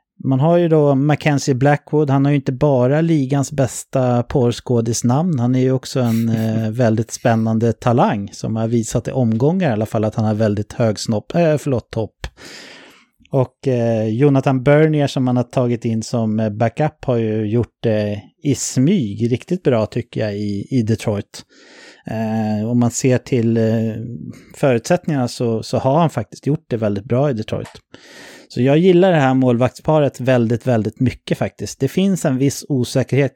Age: 30-49